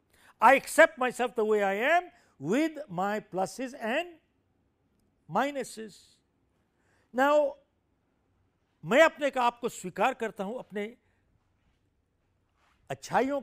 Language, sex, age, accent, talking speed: Hindi, male, 60-79, native, 100 wpm